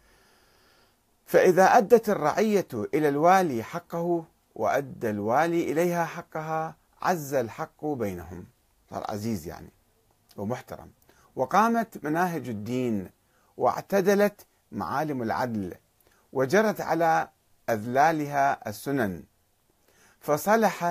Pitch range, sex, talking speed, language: 120-175 Hz, male, 80 wpm, Arabic